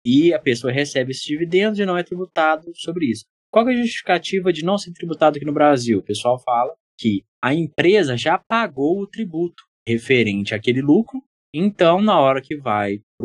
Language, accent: Portuguese, Brazilian